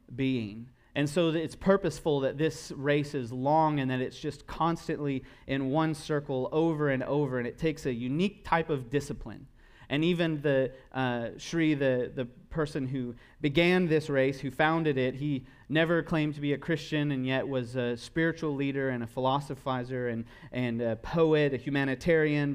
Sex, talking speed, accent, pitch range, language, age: male, 175 wpm, American, 125-155 Hz, English, 30-49